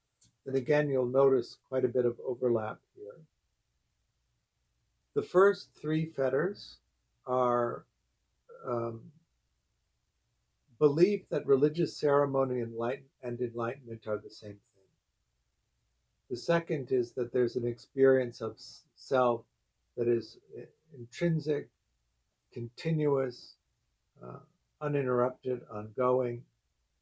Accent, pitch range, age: American, 110-135 Hz, 50-69